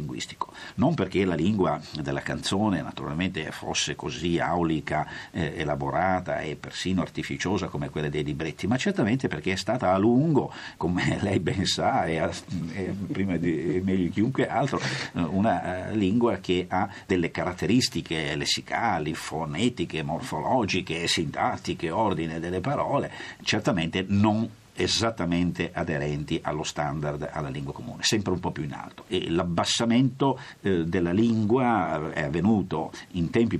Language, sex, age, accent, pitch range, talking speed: Italian, male, 50-69, native, 80-100 Hz, 135 wpm